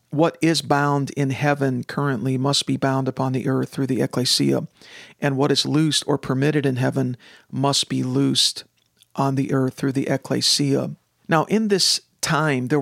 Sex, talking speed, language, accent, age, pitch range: male, 175 wpm, English, American, 50-69, 130-150 Hz